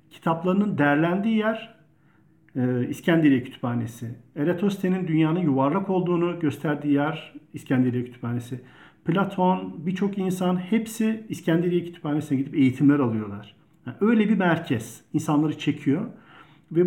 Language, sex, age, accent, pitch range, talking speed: Turkish, male, 50-69, native, 140-180 Hz, 105 wpm